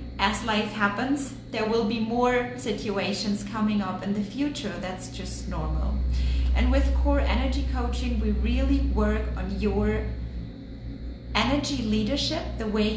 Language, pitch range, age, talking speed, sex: English, 185-245 Hz, 30-49, 140 wpm, female